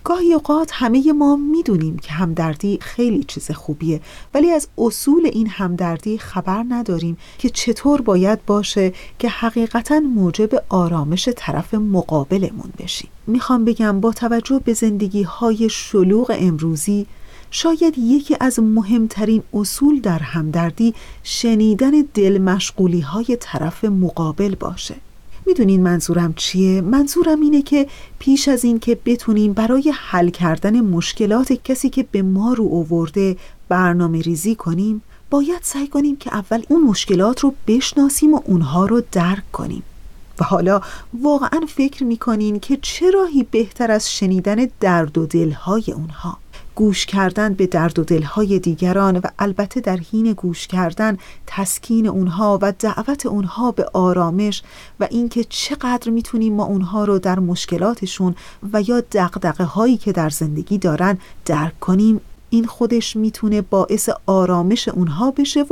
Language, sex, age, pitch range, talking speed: Persian, female, 40-59, 180-240 Hz, 135 wpm